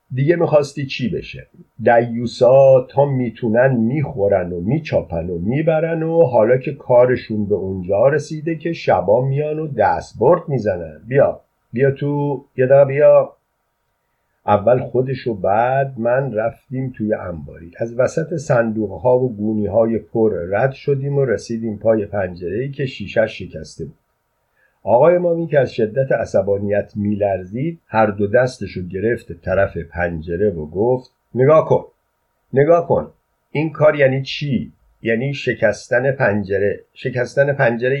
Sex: male